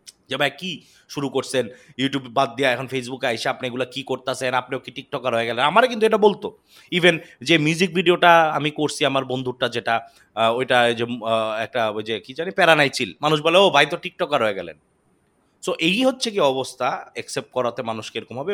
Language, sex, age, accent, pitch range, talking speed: Bengali, male, 30-49, native, 130-185 Hz, 195 wpm